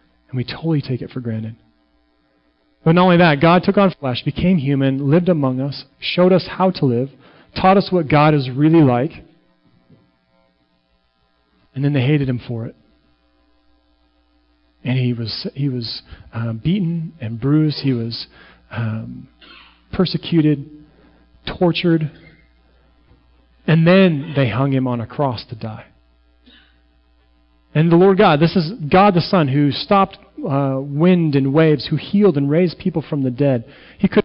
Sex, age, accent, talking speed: male, 40-59, American, 155 wpm